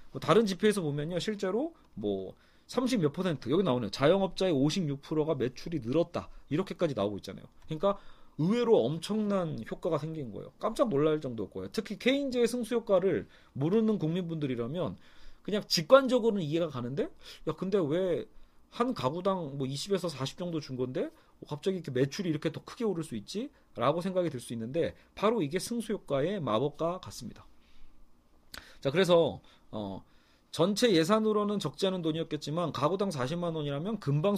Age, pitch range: 40-59, 135-195 Hz